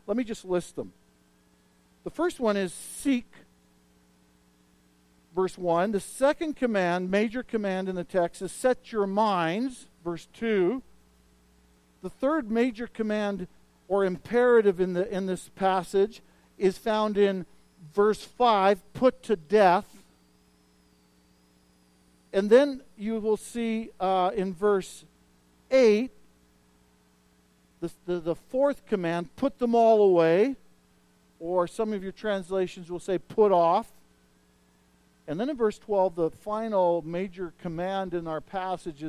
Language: English